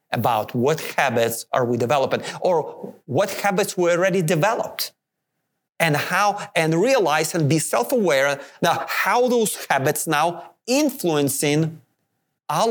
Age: 40-59